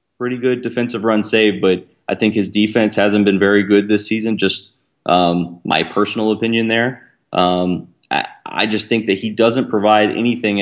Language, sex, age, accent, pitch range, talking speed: English, male, 20-39, American, 95-110 Hz, 180 wpm